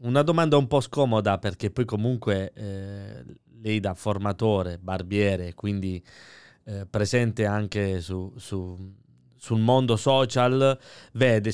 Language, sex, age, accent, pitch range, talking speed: Italian, male, 20-39, native, 95-110 Hz, 120 wpm